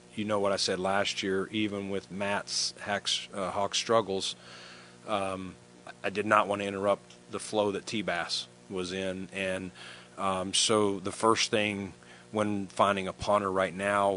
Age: 40-59